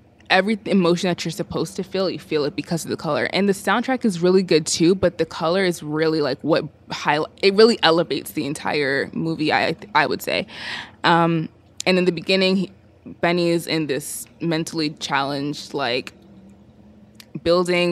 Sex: female